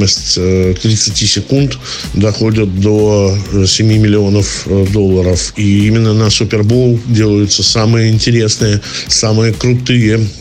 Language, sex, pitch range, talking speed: Russian, male, 100-115 Hz, 90 wpm